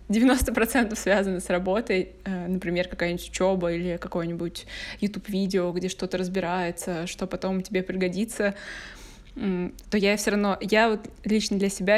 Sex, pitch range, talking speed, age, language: female, 185-210 Hz, 135 wpm, 20-39, Russian